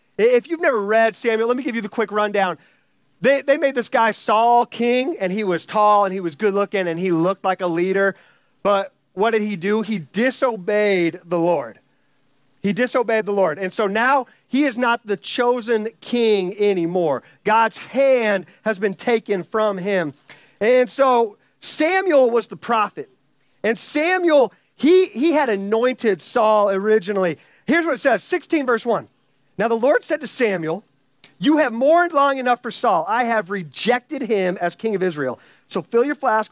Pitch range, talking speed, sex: 190-255 Hz, 180 wpm, male